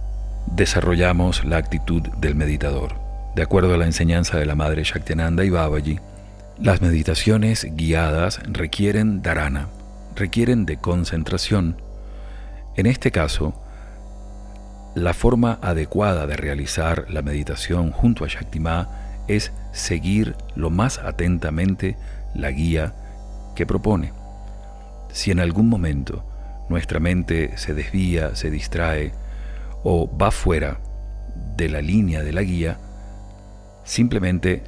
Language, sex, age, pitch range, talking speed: Spanish, male, 40-59, 75-100 Hz, 115 wpm